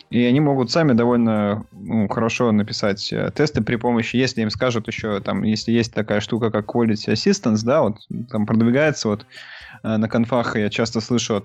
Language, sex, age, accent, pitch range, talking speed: Russian, male, 20-39, native, 110-130 Hz, 175 wpm